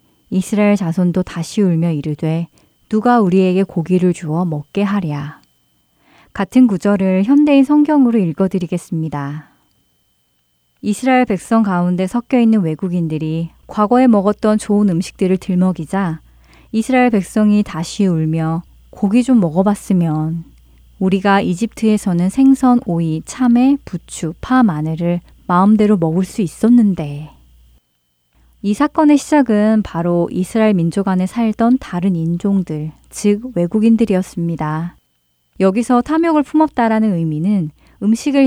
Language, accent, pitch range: Korean, native, 165-220 Hz